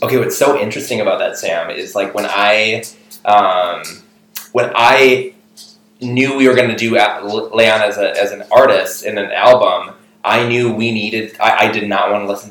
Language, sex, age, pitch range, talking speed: English, male, 20-39, 105-160 Hz, 185 wpm